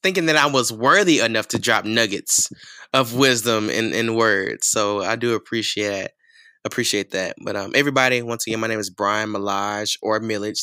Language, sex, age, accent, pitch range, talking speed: English, male, 20-39, American, 105-125 Hz, 180 wpm